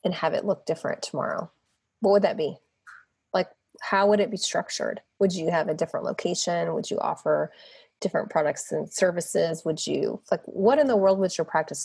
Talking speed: 200 wpm